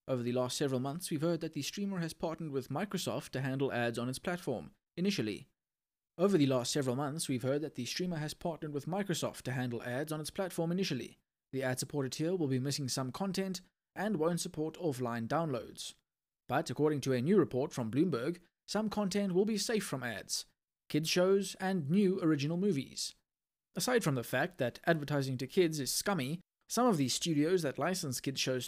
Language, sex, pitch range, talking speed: English, male, 135-185 Hz, 200 wpm